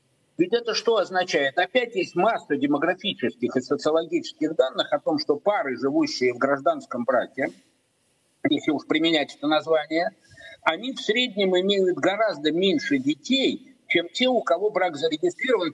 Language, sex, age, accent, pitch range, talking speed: Russian, male, 50-69, native, 155-235 Hz, 140 wpm